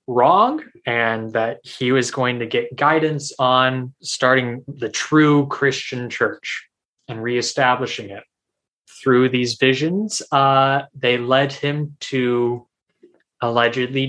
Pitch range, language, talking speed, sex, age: 120-135 Hz, English, 115 wpm, male, 20-39